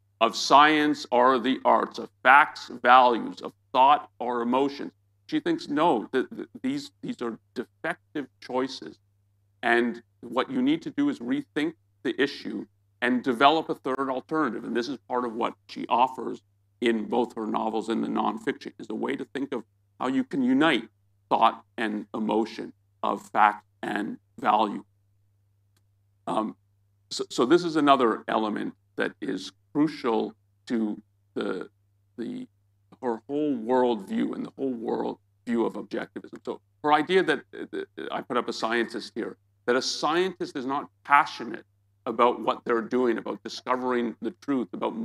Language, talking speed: English, 160 wpm